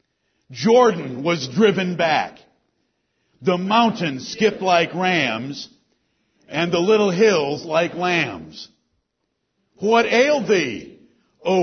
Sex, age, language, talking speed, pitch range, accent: male, 60-79, English, 100 wpm, 165-220 Hz, American